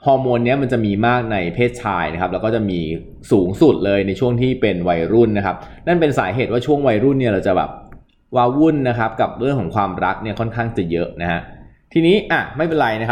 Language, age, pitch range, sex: Thai, 20-39, 100-130 Hz, male